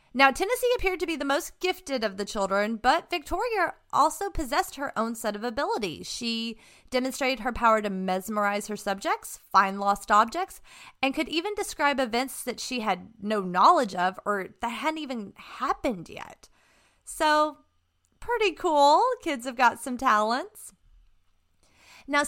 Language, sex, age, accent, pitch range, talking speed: English, female, 30-49, American, 210-300 Hz, 155 wpm